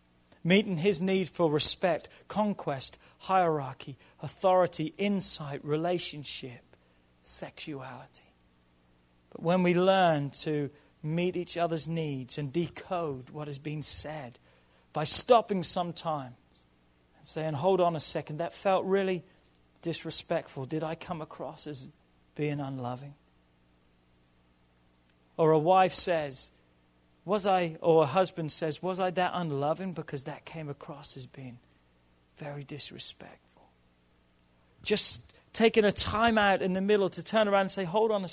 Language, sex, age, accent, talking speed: English, male, 40-59, British, 130 wpm